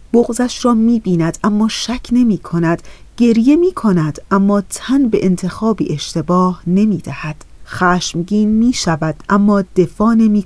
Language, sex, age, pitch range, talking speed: Persian, female, 30-49, 180-230 Hz, 140 wpm